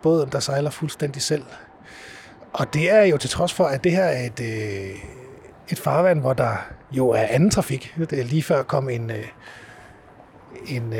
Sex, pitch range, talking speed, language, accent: male, 125-160 Hz, 175 wpm, Danish, native